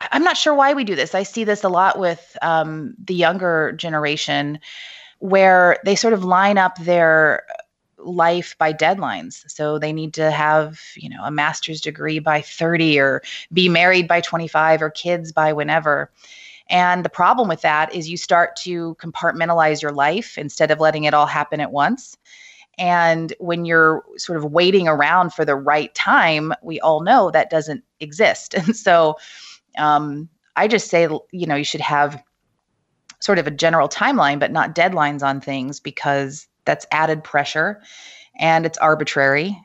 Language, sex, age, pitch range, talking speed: English, female, 30-49, 150-175 Hz, 170 wpm